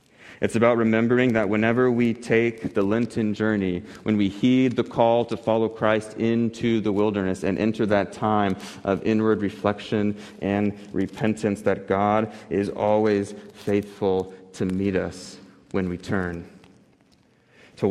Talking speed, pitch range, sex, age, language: 140 wpm, 95-110 Hz, male, 30-49, English